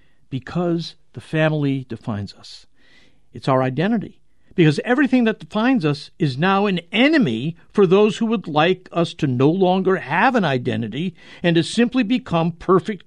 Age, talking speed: 60-79, 155 wpm